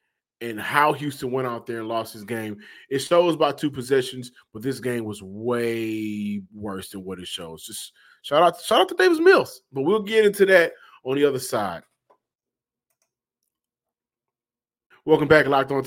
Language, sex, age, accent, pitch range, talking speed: English, male, 20-39, American, 120-155 Hz, 175 wpm